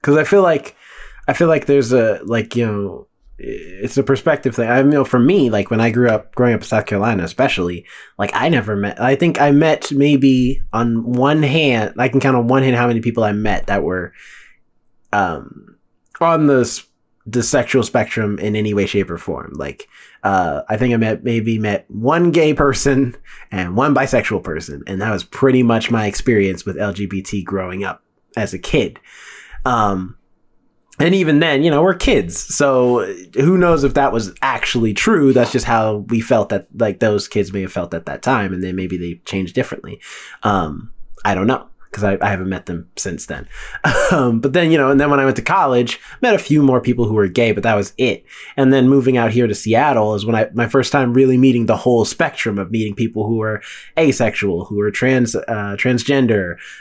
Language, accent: English, American